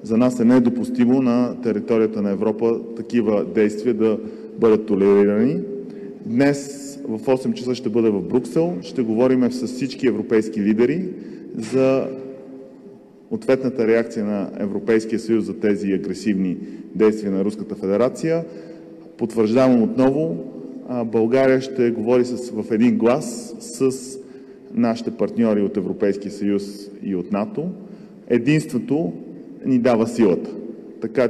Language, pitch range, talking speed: Bulgarian, 110-145 Hz, 120 wpm